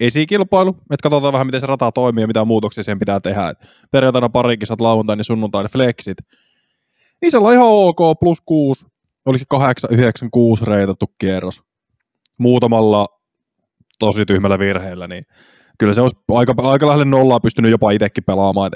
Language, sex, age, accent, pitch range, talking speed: Finnish, male, 20-39, native, 105-135 Hz, 155 wpm